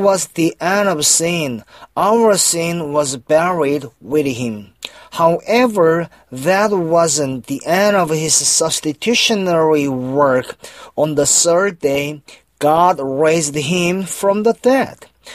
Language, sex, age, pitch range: Korean, male, 30-49, 150-190 Hz